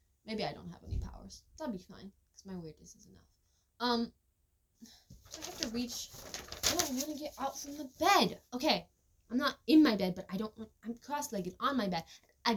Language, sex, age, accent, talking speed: English, female, 10-29, American, 210 wpm